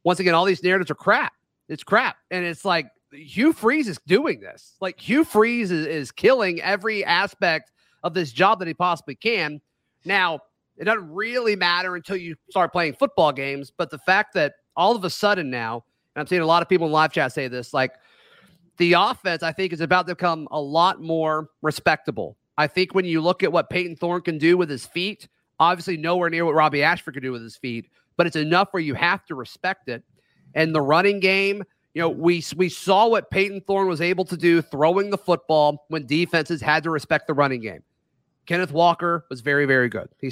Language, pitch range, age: English, 145-180 Hz, 30-49